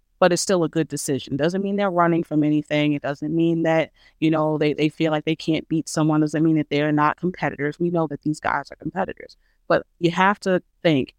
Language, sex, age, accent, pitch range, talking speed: English, female, 30-49, American, 150-180 Hz, 250 wpm